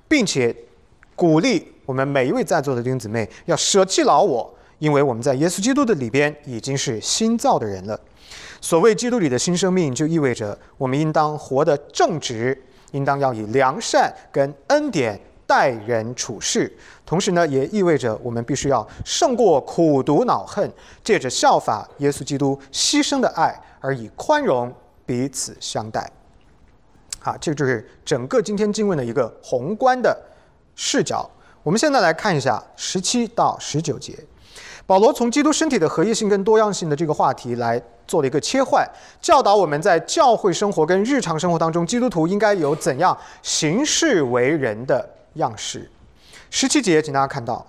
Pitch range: 135-215 Hz